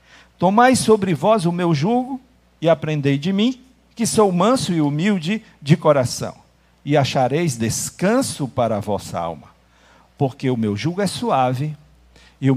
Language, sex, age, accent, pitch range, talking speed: Portuguese, male, 50-69, Brazilian, 110-170 Hz, 155 wpm